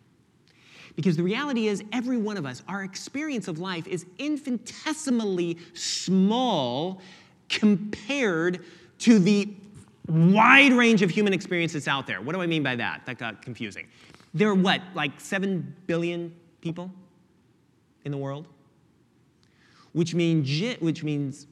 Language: English